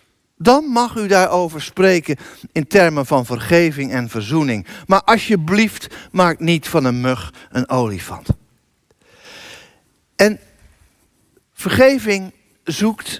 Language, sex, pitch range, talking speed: Dutch, male, 165-235 Hz, 105 wpm